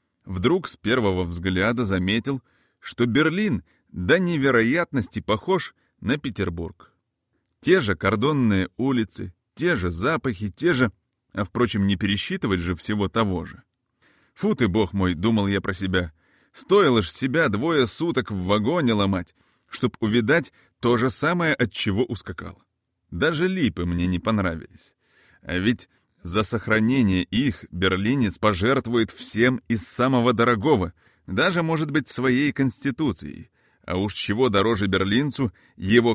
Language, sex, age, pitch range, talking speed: Russian, male, 30-49, 95-130 Hz, 135 wpm